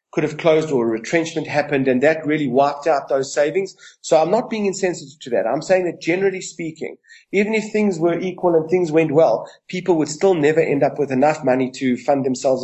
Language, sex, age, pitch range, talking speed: English, male, 30-49, 150-195 Hz, 225 wpm